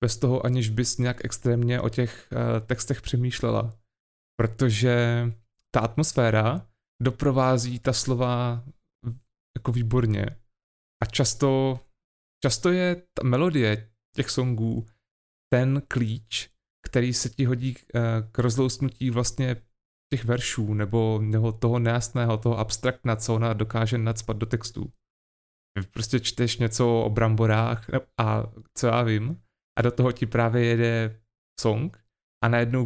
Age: 30-49